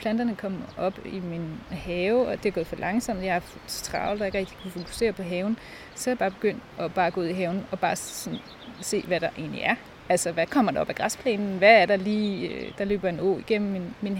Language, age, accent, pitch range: Danish, 30-49, native, 180-225 Hz